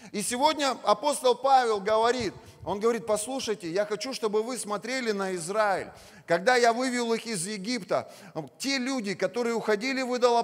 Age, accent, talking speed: 30-49, native, 150 wpm